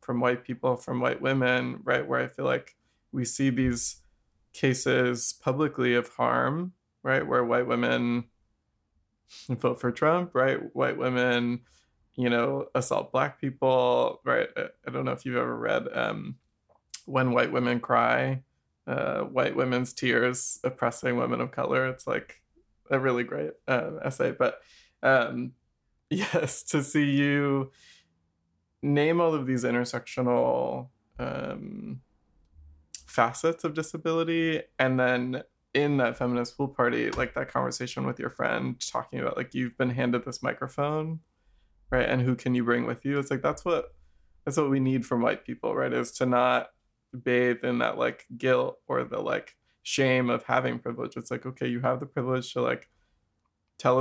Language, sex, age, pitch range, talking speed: English, male, 20-39, 120-135 Hz, 155 wpm